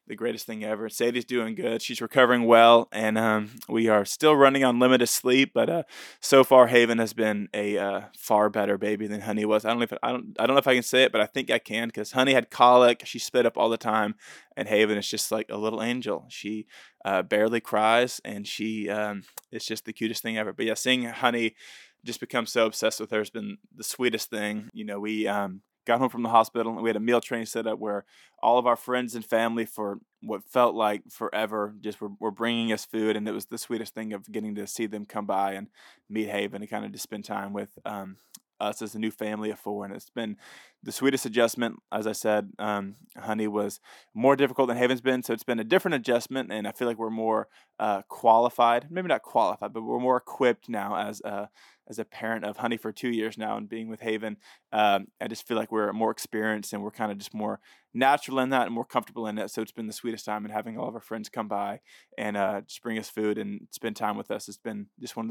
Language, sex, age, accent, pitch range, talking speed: English, male, 20-39, American, 105-120 Hz, 250 wpm